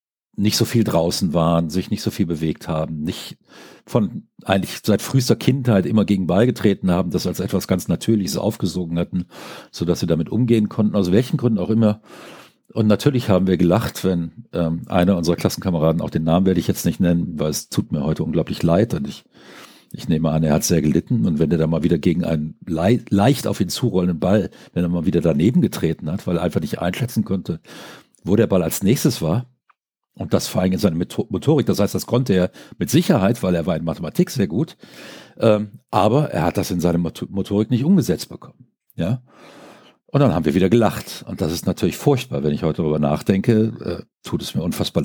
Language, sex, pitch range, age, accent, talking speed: German, male, 85-115 Hz, 50-69, German, 215 wpm